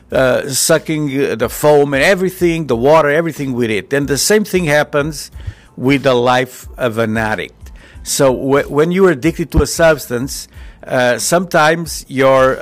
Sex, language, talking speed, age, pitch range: male, English, 155 wpm, 50-69, 125-155 Hz